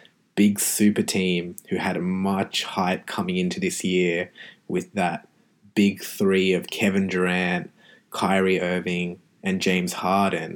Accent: Australian